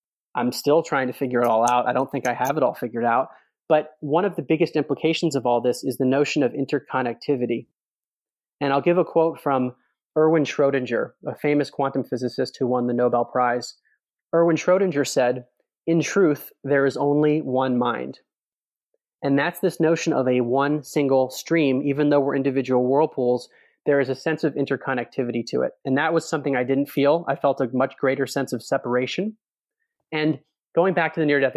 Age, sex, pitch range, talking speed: 30-49, male, 130-155 Hz, 190 wpm